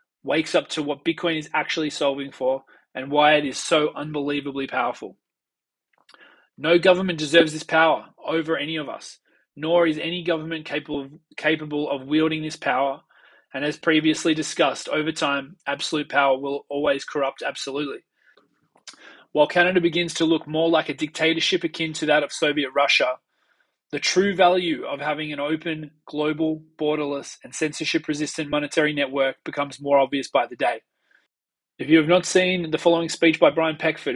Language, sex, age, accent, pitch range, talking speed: English, male, 20-39, Australian, 145-160 Hz, 160 wpm